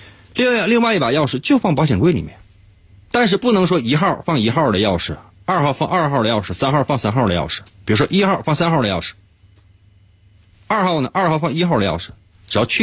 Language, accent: Chinese, native